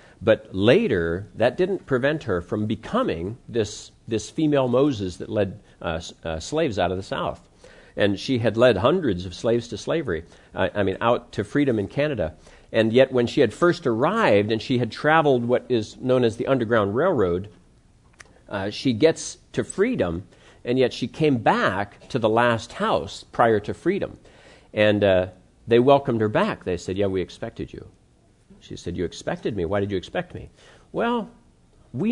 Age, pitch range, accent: 50-69, 95-130 Hz, American